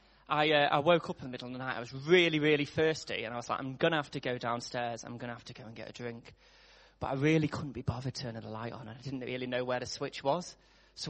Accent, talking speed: British, 310 wpm